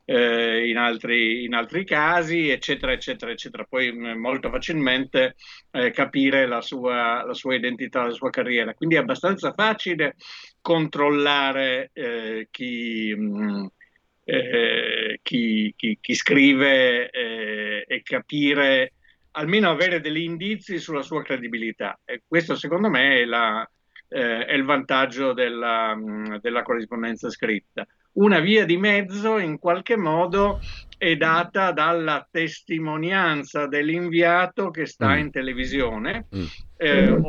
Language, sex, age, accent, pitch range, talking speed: Italian, male, 50-69, native, 125-175 Hz, 120 wpm